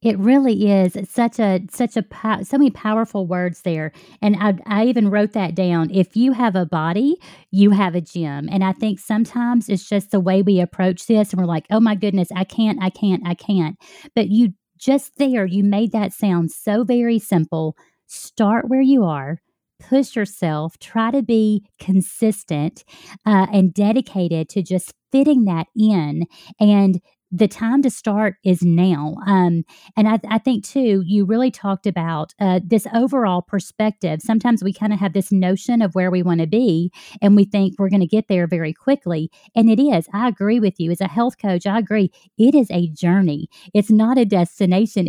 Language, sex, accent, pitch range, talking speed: English, female, American, 180-225 Hz, 190 wpm